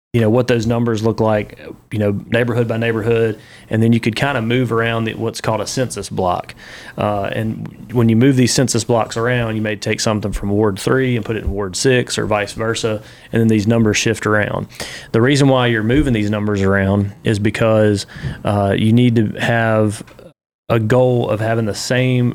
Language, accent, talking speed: English, American, 205 wpm